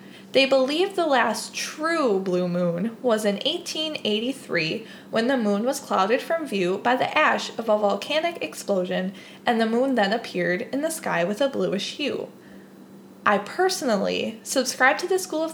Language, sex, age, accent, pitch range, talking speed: English, female, 20-39, American, 195-275 Hz, 165 wpm